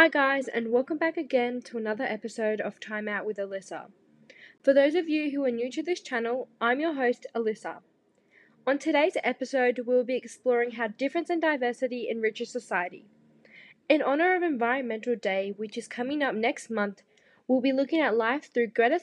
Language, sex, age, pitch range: English, female, 10-29, 225-270 Hz